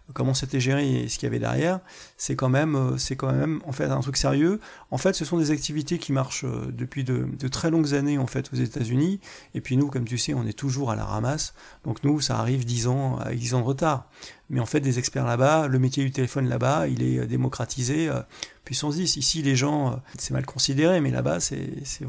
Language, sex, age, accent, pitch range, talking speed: French, male, 30-49, French, 135-165 Hz, 235 wpm